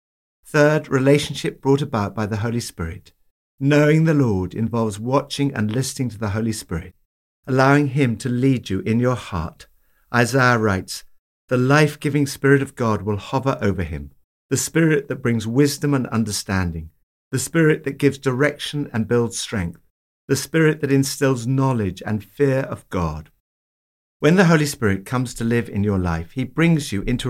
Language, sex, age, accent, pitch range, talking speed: English, male, 50-69, British, 100-140 Hz, 165 wpm